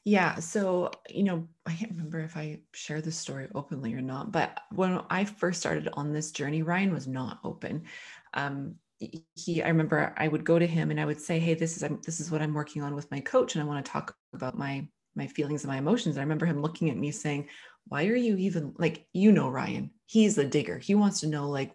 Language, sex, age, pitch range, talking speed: English, female, 20-39, 150-190 Hz, 245 wpm